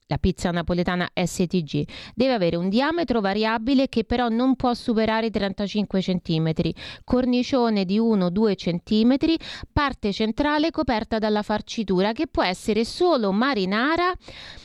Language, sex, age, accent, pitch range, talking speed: Italian, female, 30-49, native, 195-265 Hz, 125 wpm